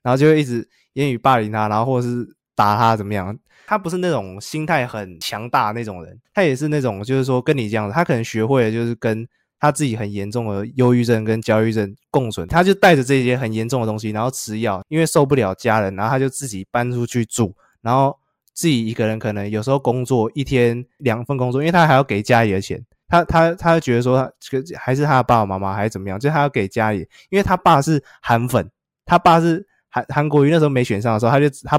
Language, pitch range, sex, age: Chinese, 110-140 Hz, male, 20-39